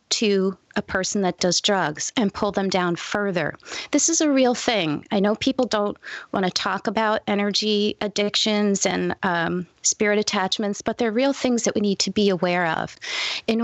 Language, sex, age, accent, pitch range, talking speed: English, female, 30-49, American, 180-225 Hz, 180 wpm